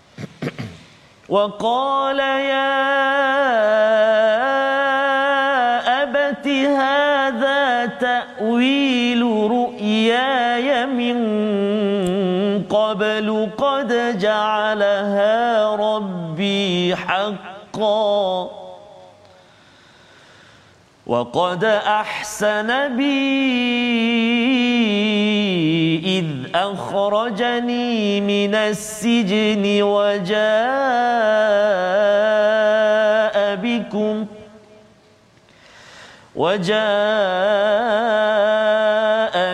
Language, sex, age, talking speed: Malayalam, male, 40-59, 30 wpm